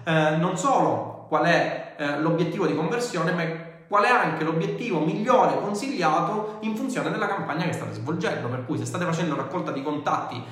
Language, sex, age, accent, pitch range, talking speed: Italian, male, 30-49, native, 125-165 Hz, 175 wpm